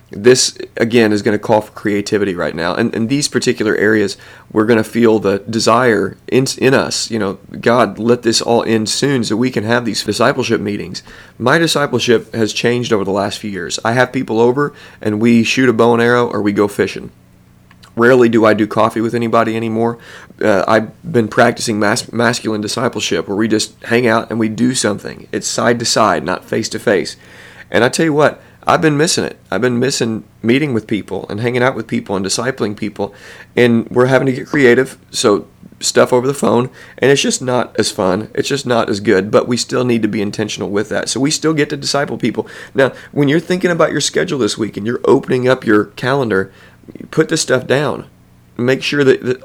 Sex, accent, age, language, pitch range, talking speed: male, American, 30-49, English, 110-125 Hz, 215 wpm